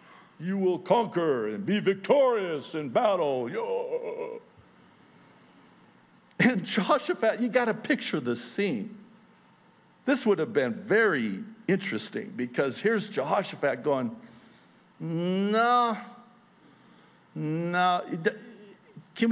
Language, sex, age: English, male, 60-79